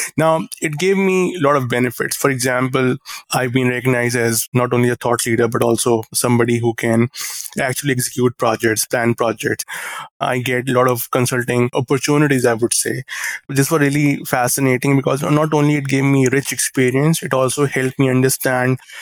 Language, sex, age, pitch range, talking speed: English, male, 20-39, 120-140 Hz, 175 wpm